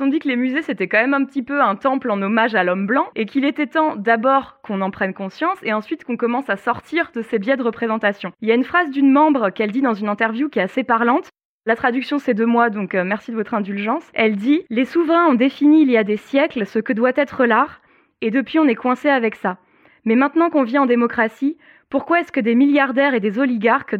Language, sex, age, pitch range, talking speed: French, female, 20-39, 225-275 Hz, 255 wpm